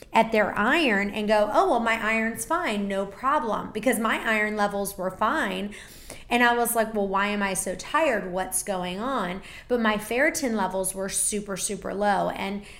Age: 30-49